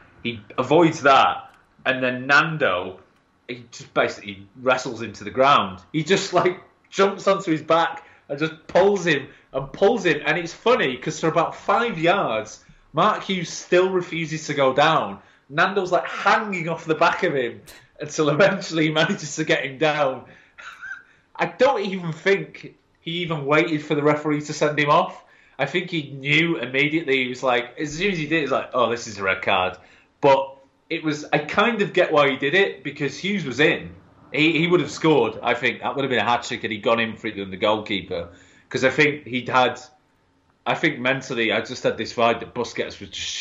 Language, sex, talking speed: English, male, 205 wpm